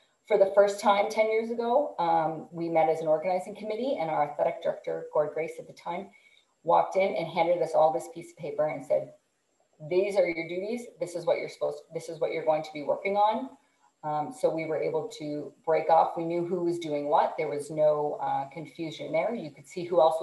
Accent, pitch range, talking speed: American, 155-215 Hz, 230 wpm